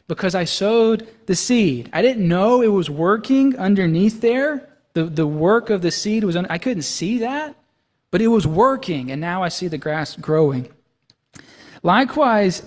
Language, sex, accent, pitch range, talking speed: English, male, American, 150-220 Hz, 170 wpm